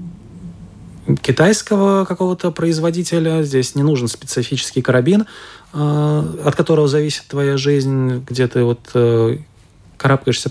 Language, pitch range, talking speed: Russian, 120-145 Hz, 95 wpm